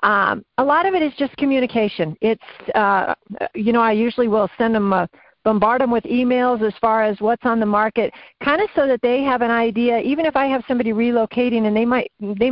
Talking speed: 235 wpm